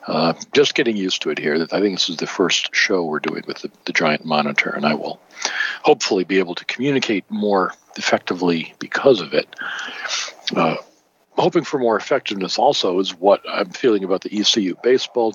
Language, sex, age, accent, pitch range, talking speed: English, male, 50-69, American, 85-110 Hz, 190 wpm